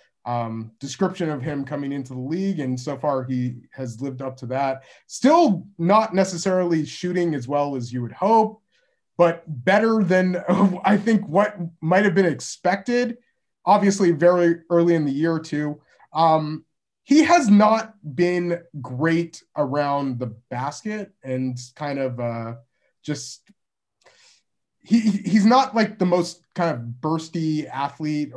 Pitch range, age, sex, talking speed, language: 130-180 Hz, 20-39, male, 145 wpm, English